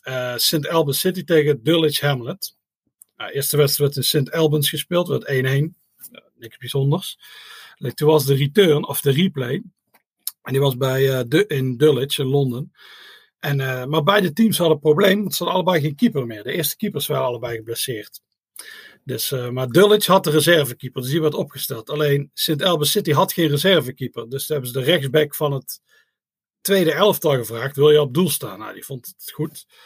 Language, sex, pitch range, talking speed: Dutch, male, 135-175 Hz, 195 wpm